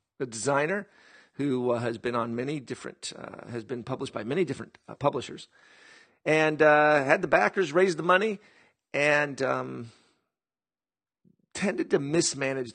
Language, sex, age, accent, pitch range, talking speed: English, male, 40-59, American, 120-150 Hz, 145 wpm